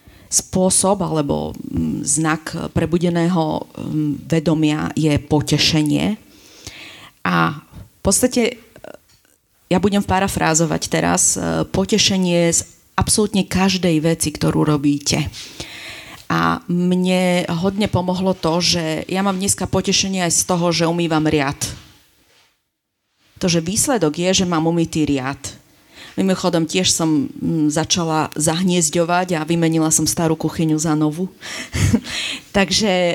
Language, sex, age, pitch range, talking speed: Slovak, female, 40-59, 155-185 Hz, 105 wpm